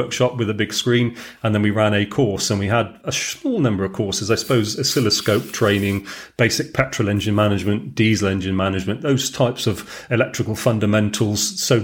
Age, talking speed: 40-59, 185 wpm